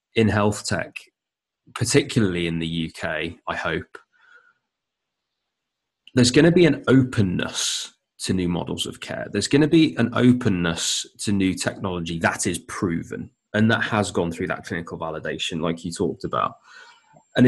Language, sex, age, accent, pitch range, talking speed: English, male, 20-39, British, 85-120 Hz, 155 wpm